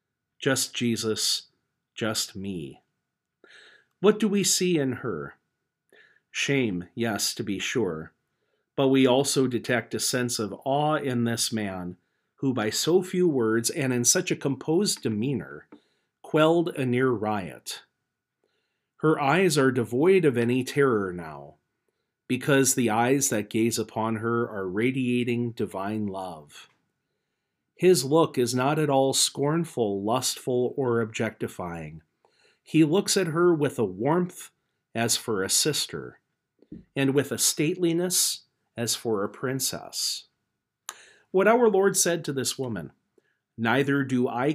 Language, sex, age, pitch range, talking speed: English, male, 40-59, 115-150 Hz, 135 wpm